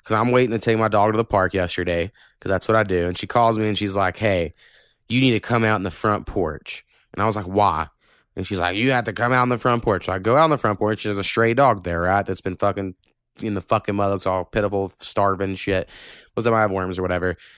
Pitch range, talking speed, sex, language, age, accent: 100-120 Hz, 285 wpm, male, English, 20-39, American